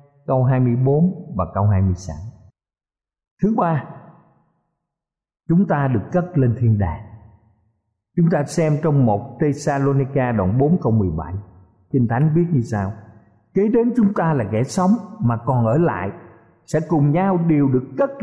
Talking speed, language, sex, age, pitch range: 155 wpm, Vietnamese, male, 50-69, 115-175 Hz